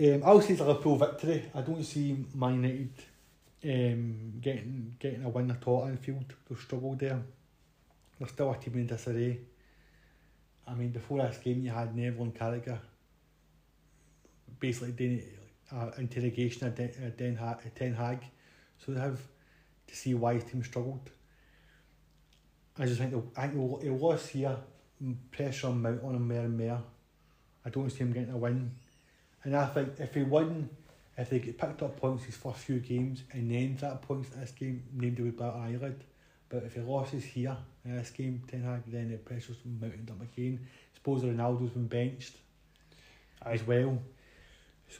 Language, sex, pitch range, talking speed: English, male, 120-140 Hz, 170 wpm